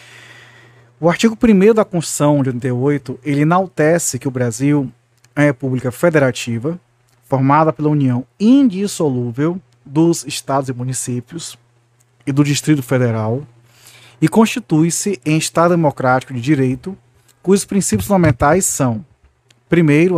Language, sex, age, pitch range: Portuguese, male, 40-59, 120-160 Hz